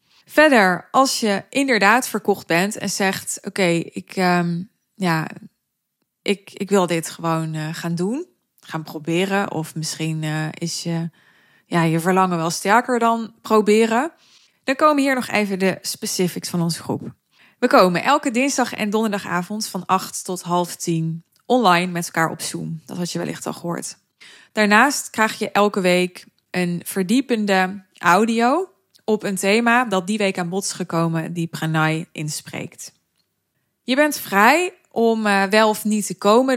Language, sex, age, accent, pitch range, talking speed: Dutch, female, 20-39, Dutch, 170-215 Hz, 160 wpm